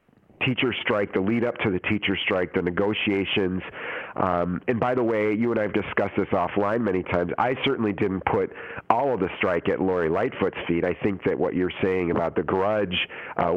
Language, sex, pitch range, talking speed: English, male, 90-115 Hz, 205 wpm